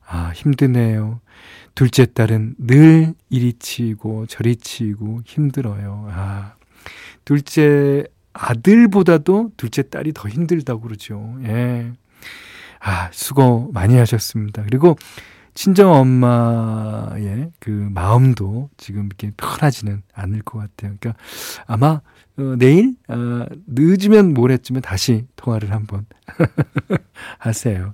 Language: Korean